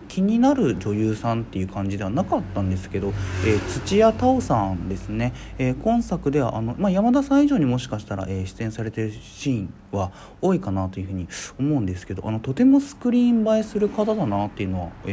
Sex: male